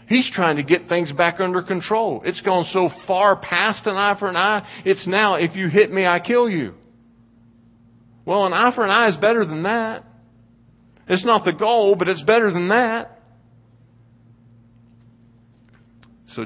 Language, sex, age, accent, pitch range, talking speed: English, male, 50-69, American, 115-165 Hz, 170 wpm